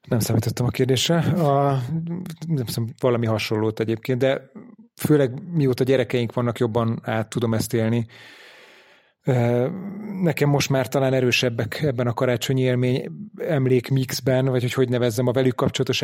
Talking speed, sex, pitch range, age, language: 135 wpm, male, 120-135 Hz, 30-49, Hungarian